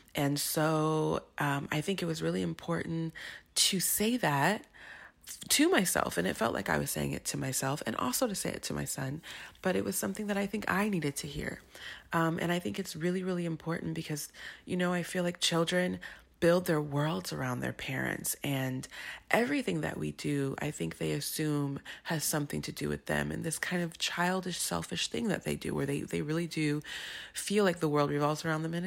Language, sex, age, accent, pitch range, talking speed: English, female, 30-49, American, 140-180 Hz, 210 wpm